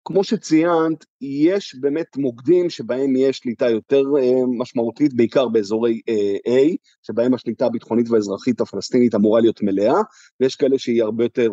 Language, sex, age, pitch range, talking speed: Hebrew, male, 30-49, 115-155 Hz, 135 wpm